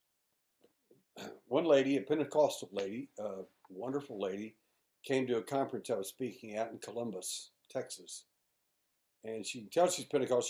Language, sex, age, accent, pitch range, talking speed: English, male, 60-79, American, 110-140 Hz, 145 wpm